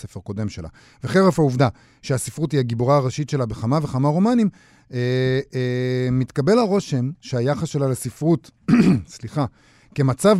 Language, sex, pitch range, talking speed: Hebrew, male, 120-155 Hz, 125 wpm